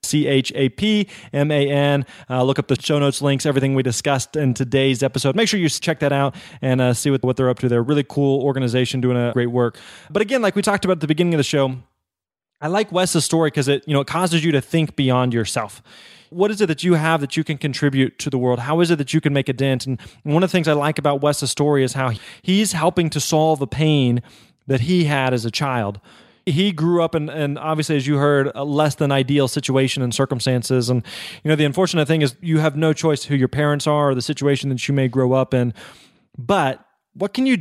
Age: 20-39